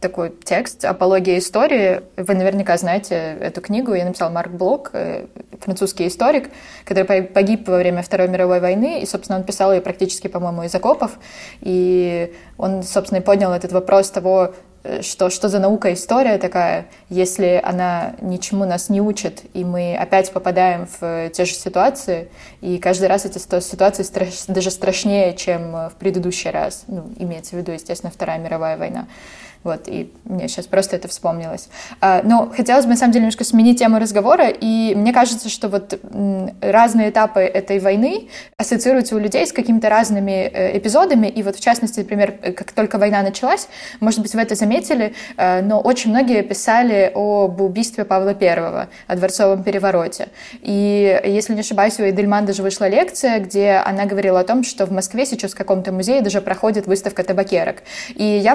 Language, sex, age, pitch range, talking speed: Russian, female, 20-39, 185-215 Hz, 165 wpm